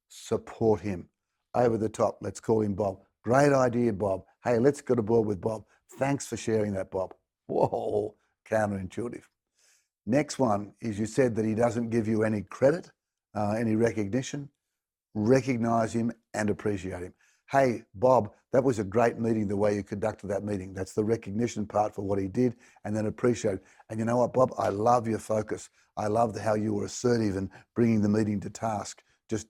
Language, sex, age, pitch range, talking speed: English, male, 60-79, 105-120 Hz, 185 wpm